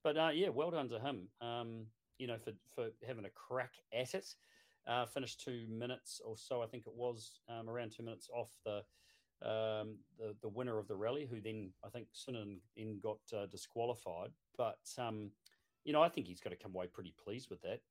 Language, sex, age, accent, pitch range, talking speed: English, male, 40-59, Australian, 100-120 Hz, 215 wpm